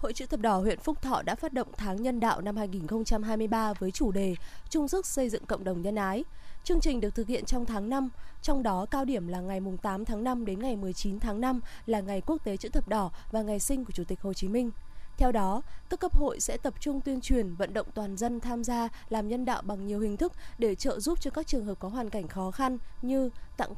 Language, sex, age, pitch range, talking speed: Vietnamese, female, 20-39, 205-265 Hz, 255 wpm